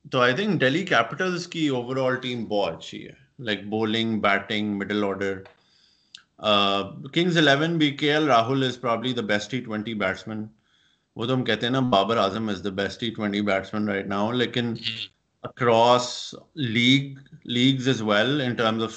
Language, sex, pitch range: Urdu, male, 105-125 Hz